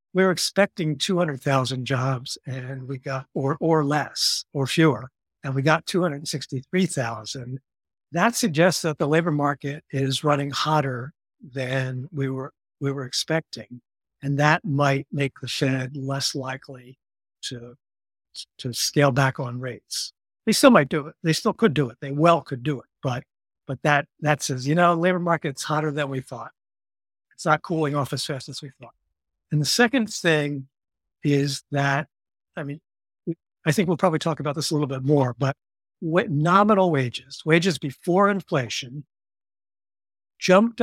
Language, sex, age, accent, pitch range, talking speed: English, male, 60-79, American, 130-155 Hz, 160 wpm